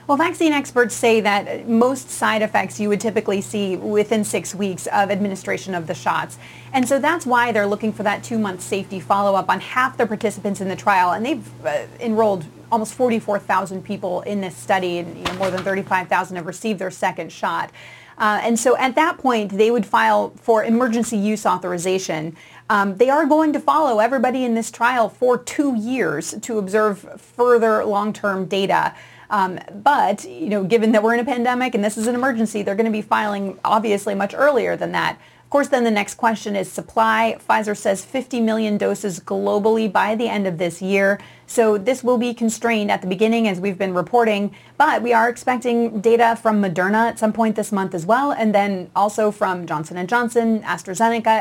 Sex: female